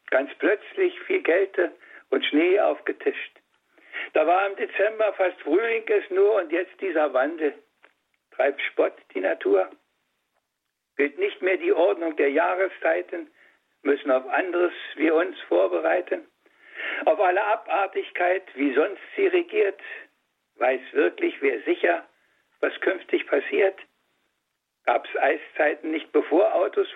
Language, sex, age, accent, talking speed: German, male, 60-79, German, 120 wpm